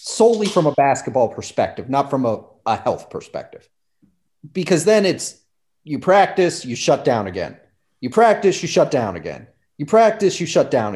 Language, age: English, 30-49